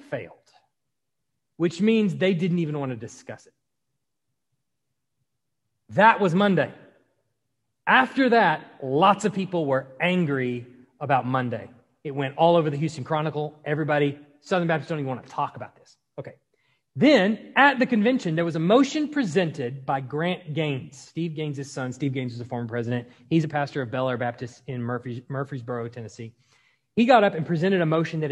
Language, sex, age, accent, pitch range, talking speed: English, male, 30-49, American, 135-190 Hz, 170 wpm